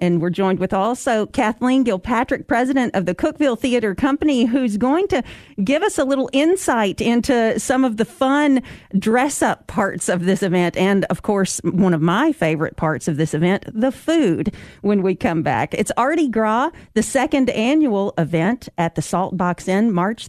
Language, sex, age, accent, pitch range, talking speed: English, female, 40-59, American, 180-250 Hz, 180 wpm